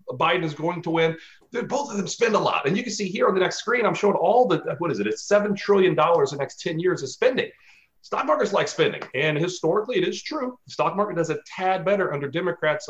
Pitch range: 125-200 Hz